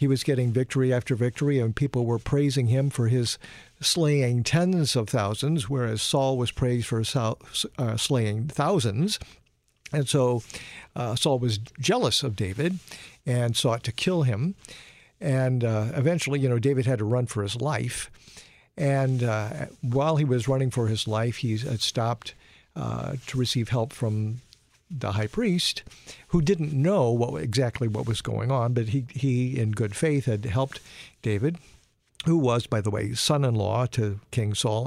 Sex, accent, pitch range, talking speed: male, American, 115-140 Hz, 165 wpm